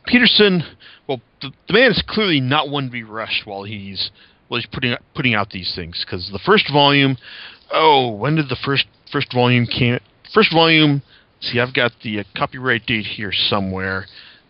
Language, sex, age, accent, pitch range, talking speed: English, male, 40-59, American, 110-155 Hz, 180 wpm